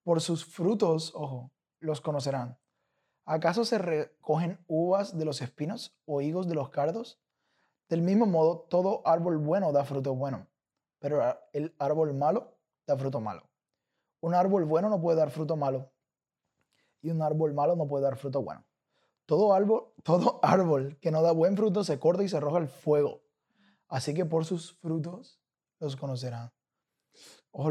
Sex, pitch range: male, 145-180 Hz